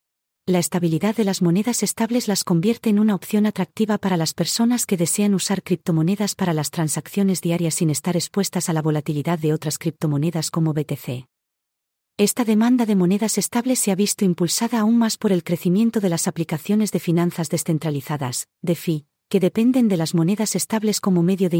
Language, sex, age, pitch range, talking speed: English, female, 40-59, 165-205 Hz, 180 wpm